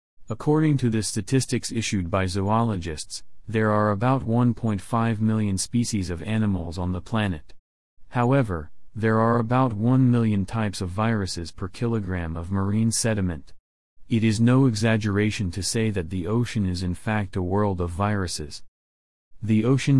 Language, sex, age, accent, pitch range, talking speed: English, male, 40-59, American, 90-115 Hz, 150 wpm